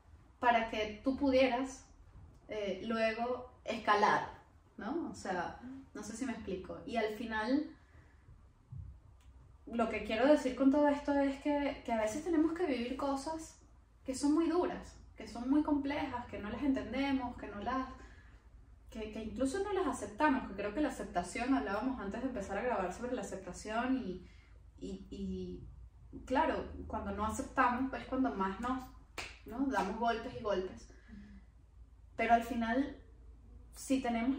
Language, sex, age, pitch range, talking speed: Spanish, female, 20-39, 190-260 Hz, 160 wpm